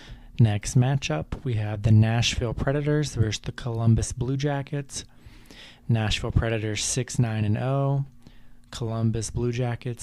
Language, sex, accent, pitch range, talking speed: English, male, American, 105-120 Hz, 125 wpm